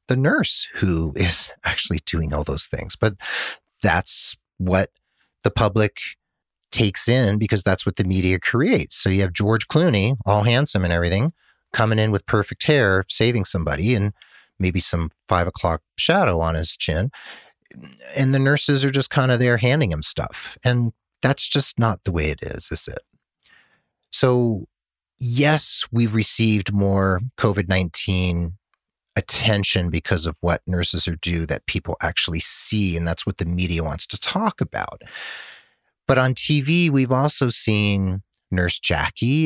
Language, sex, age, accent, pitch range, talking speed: English, male, 40-59, American, 85-115 Hz, 155 wpm